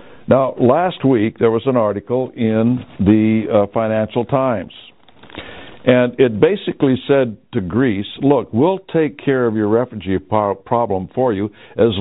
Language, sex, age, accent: English, male, 60-79, American